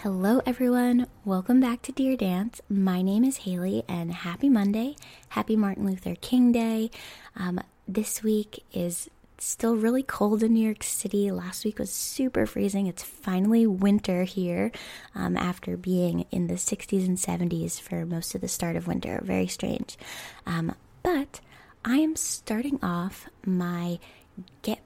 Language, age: English, 10-29